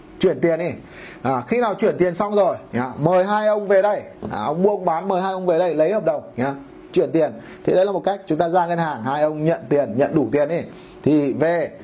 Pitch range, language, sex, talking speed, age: 160-200 Hz, Vietnamese, male, 260 wpm, 20-39